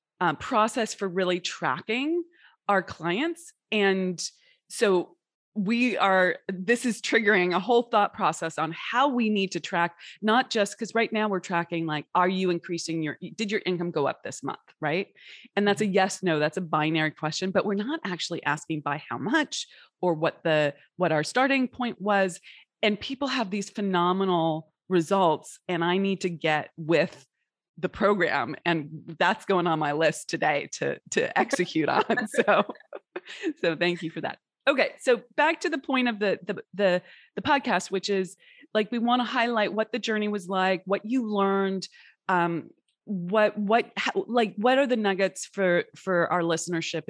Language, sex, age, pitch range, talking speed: English, female, 20-39, 170-230 Hz, 180 wpm